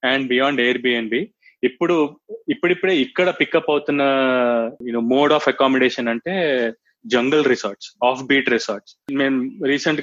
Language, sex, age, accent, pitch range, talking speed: Telugu, male, 20-39, native, 125-150 Hz, 125 wpm